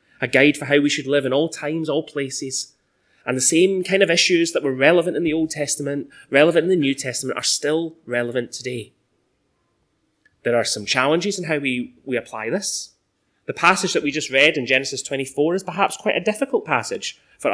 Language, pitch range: English, 125-170 Hz